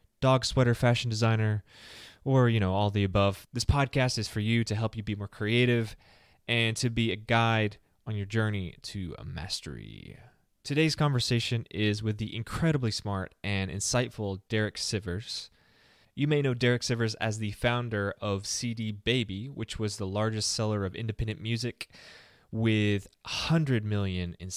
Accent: American